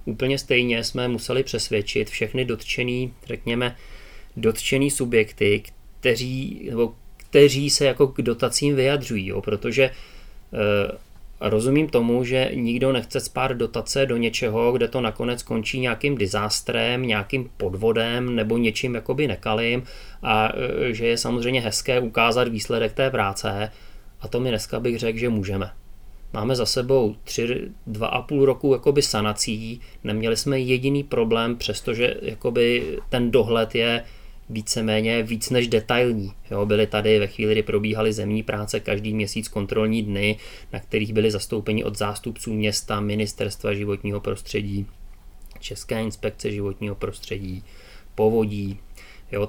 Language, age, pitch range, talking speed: Czech, 30-49, 105-125 Hz, 130 wpm